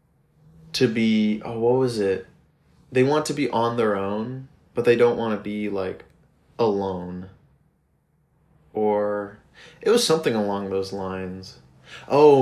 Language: English